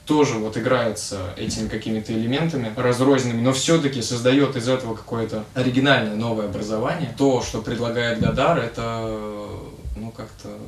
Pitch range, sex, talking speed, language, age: 105-135 Hz, male, 130 wpm, Russian, 20-39